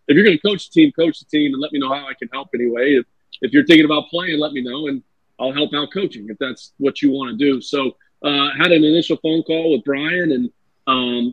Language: English